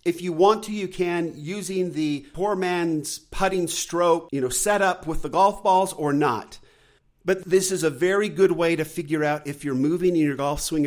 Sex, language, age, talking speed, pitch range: male, English, 50-69, 215 wpm, 155-200 Hz